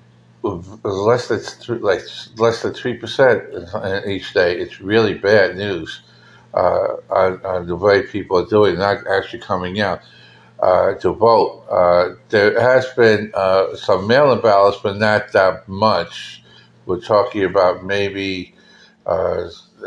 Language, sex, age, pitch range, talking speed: English, male, 50-69, 95-115 Hz, 140 wpm